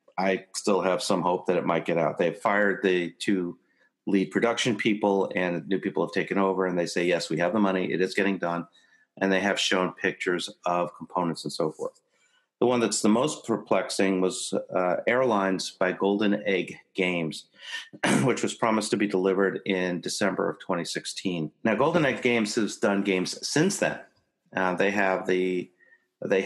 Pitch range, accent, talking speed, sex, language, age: 90-105 Hz, American, 185 wpm, male, English, 40-59